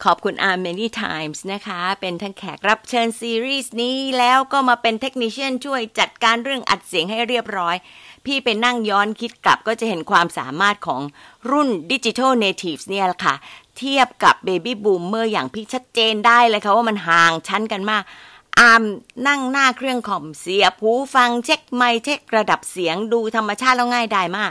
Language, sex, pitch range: Thai, female, 195-250 Hz